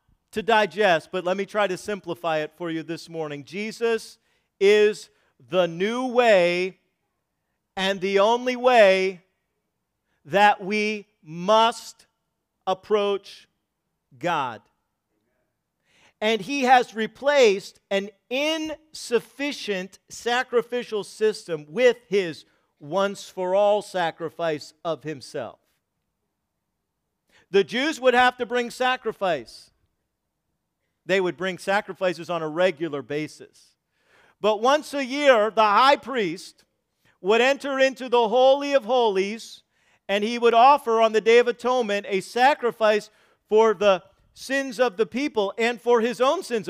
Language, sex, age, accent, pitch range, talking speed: English, male, 50-69, American, 190-250 Hz, 120 wpm